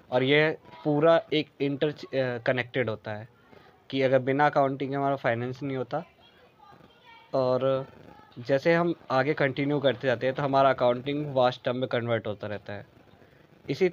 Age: 20-39